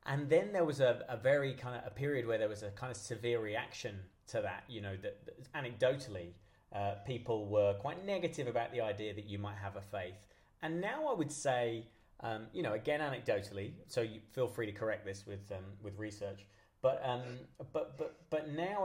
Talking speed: 215 wpm